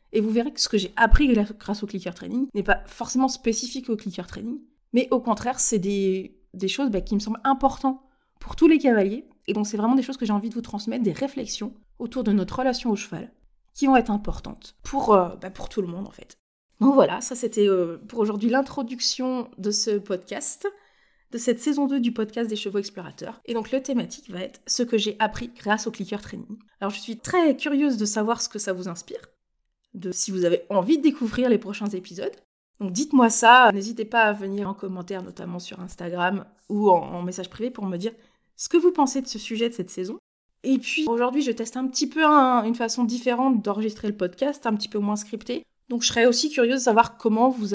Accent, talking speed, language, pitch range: French, 230 wpm, French, 200-255 Hz